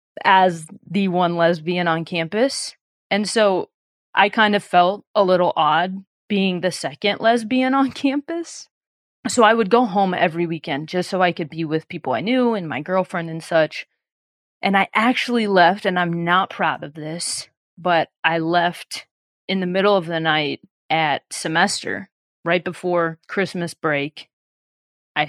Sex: female